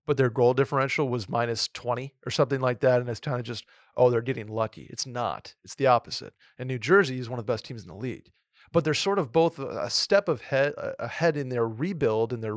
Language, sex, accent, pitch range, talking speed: English, male, American, 125-155 Hz, 240 wpm